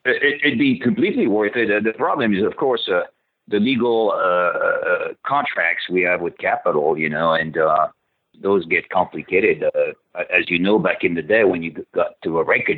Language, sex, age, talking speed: English, male, 50-69, 195 wpm